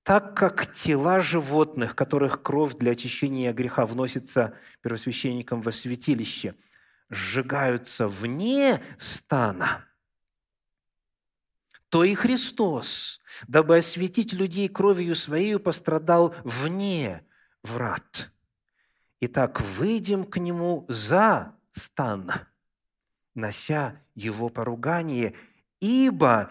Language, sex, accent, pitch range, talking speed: Russian, male, native, 120-195 Hz, 85 wpm